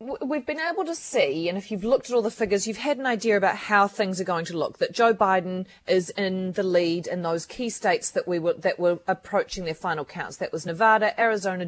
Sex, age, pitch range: female, 30-49, 175-230 Hz